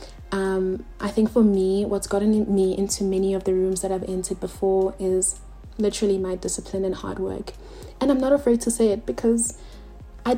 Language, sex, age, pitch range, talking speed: English, female, 30-49, 190-220 Hz, 190 wpm